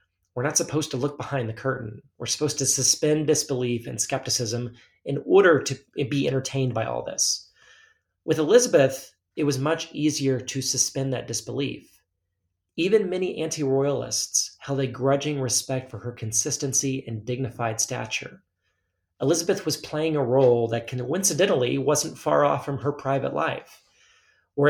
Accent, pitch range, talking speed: American, 120-145 Hz, 150 wpm